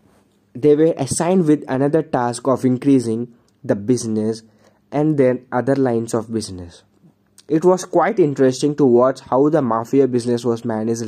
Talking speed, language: 150 wpm, English